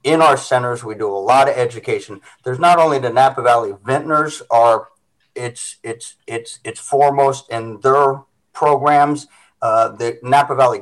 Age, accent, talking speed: 50-69, American, 160 wpm